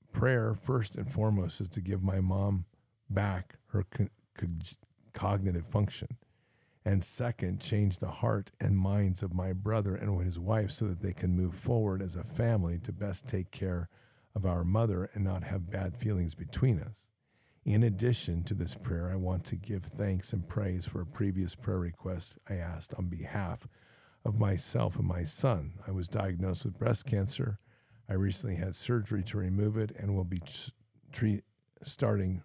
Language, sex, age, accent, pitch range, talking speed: English, male, 50-69, American, 95-115 Hz, 175 wpm